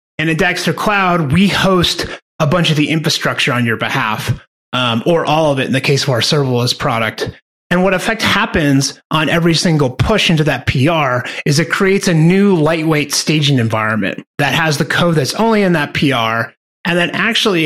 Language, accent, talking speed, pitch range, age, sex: English, American, 195 wpm, 140-185 Hz, 30-49, male